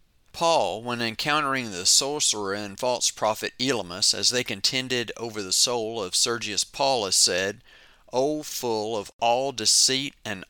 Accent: American